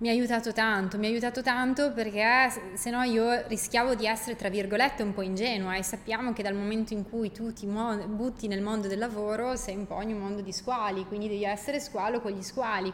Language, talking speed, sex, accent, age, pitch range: Italian, 225 wpm, female, native, 20-39, 200-235 Hz